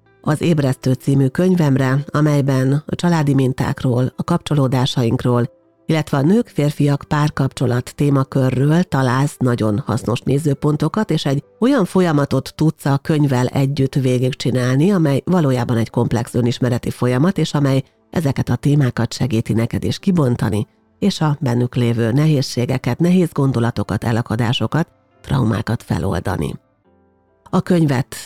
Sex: female